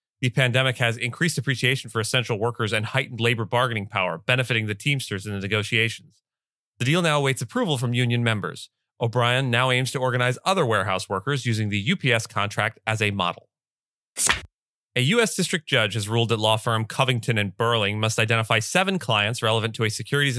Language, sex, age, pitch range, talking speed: English, male, 30-49, 110-130 Hz, 180 wpm